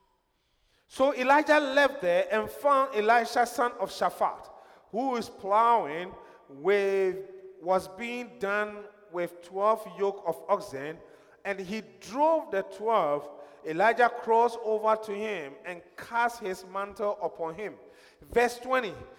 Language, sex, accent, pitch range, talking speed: English, male, Nigerian, 200-260 Hz, 120 wpm